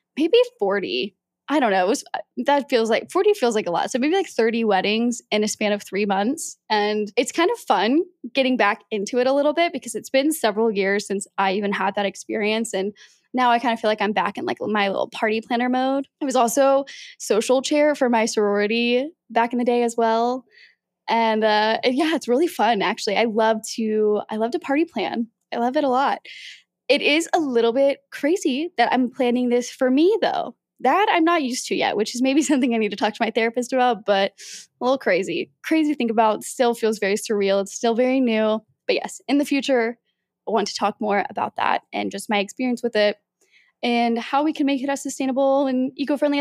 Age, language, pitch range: 10-29, English, 215-275 Hz